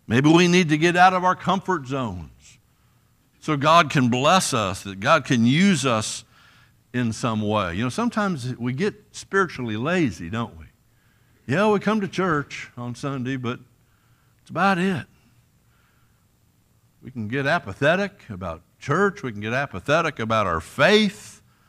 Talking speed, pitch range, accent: 155 wpm, 120-180 Hz, American